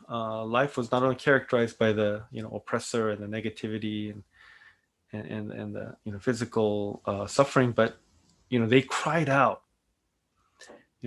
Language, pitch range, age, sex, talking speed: English, 105-135 Hz, 30-49, male, 170 wpm